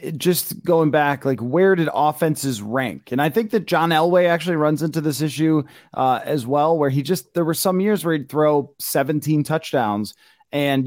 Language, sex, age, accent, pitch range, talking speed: English, male, 30-49, American, 140-180 Hz, 195 wpm